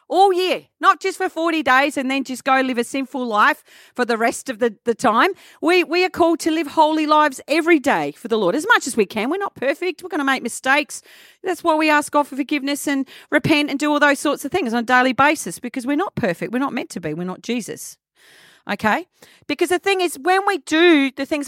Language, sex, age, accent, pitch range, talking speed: English, female, 40-59, Australian, 235-315 Hz, 250 wpm